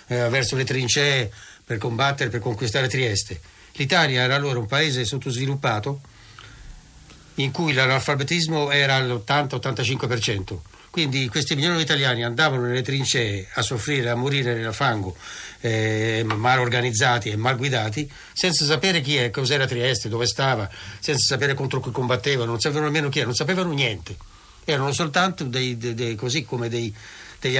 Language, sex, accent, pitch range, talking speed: Italian, male, native, 115-145 Hz, 150 wpm